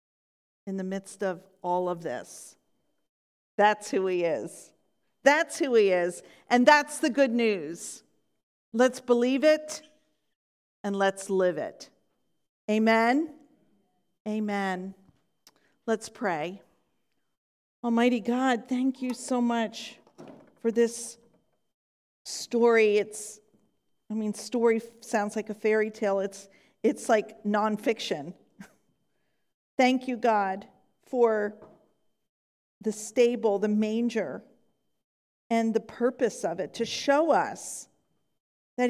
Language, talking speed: English, 110 wpm